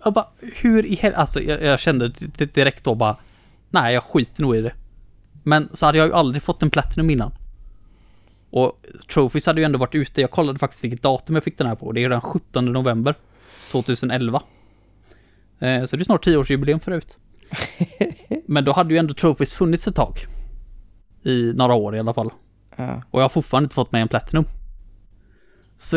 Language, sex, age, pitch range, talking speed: Swedish, male, 20-39, 110-155 Hz, 185 wpm